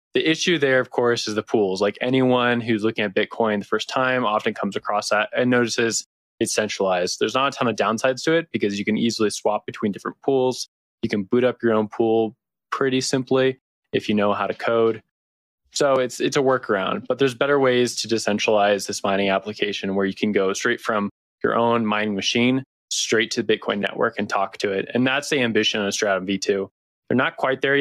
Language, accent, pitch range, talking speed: English, American, 100-120 Hz, 215 wpm